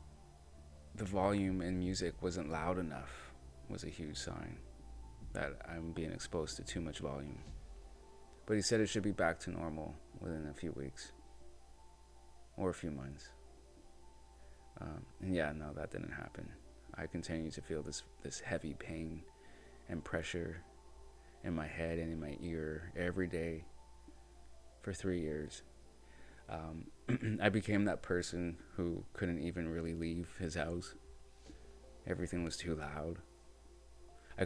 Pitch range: 70-85 Hz